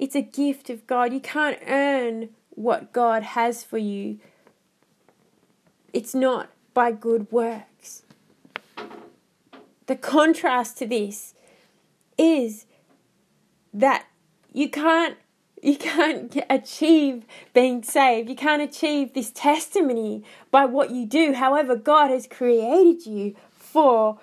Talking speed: 115 wpm